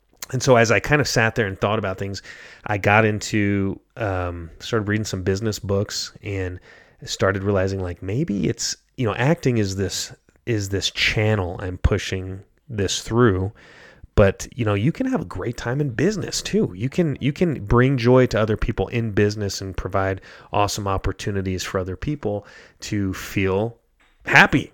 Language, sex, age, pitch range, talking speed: English, male, 30-49, 95-120 Hz, 175 wpm